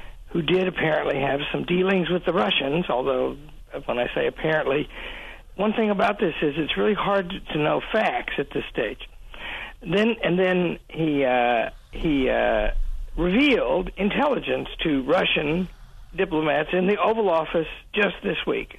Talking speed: 155 wpm